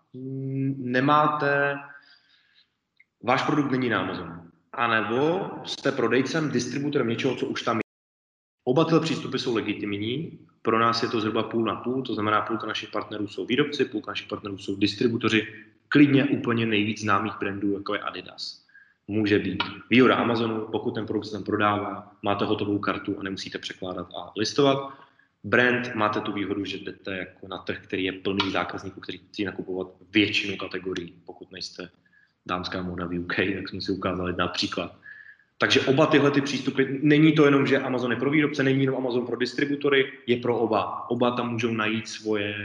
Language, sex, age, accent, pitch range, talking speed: Czech, male, 20-39, native, 100-125 Hz, 165 wpm